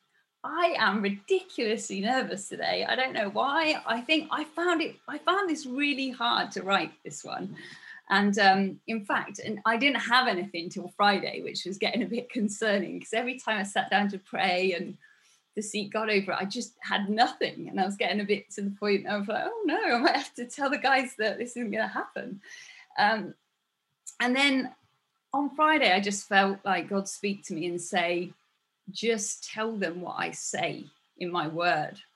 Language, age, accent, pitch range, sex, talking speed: English, 30-49, British, 200-265 Hz, female, 200 wpm